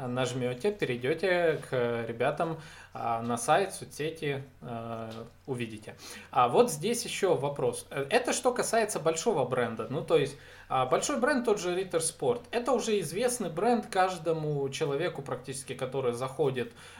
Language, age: Russian, 20-39